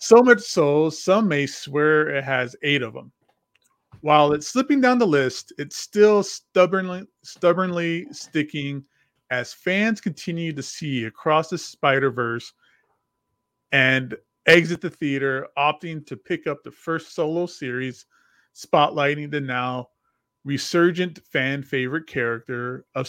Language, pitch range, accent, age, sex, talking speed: English, 130-180 Hz, American, 30-49, male, 130 wpm